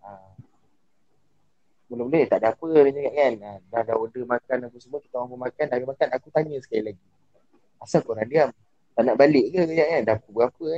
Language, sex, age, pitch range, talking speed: Malay, male, 20-39, 125-190 Hz, 230 wpm